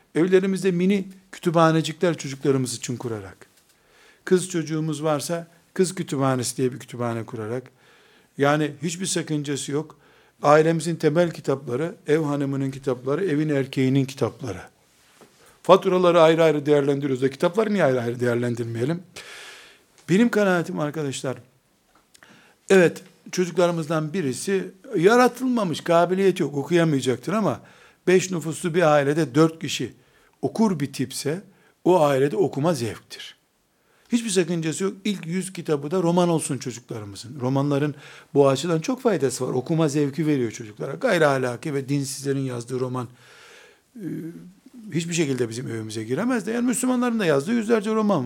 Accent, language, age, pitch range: native, Turkish, 60-79, 130-185 Hz